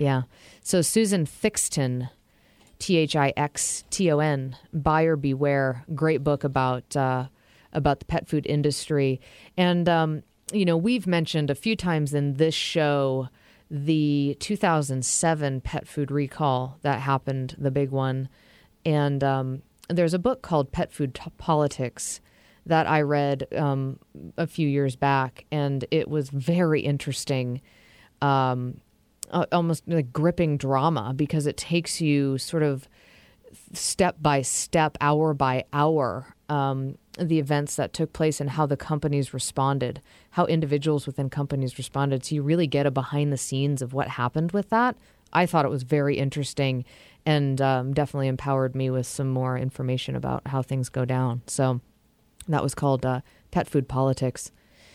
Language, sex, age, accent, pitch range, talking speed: English, female, 30-49, American, 130-155 Hz, 140 wpm